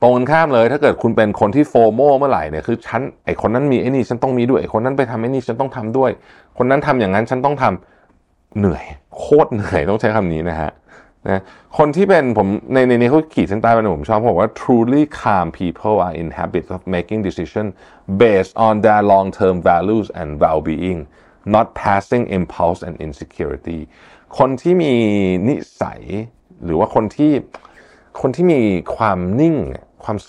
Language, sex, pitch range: Thai, male, 85-125 Hz